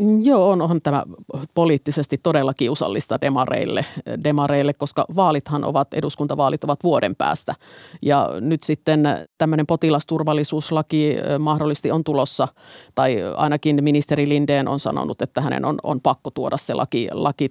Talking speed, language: 135 wpm, Finnish